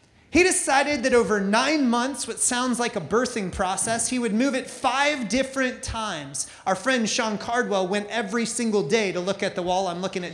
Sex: male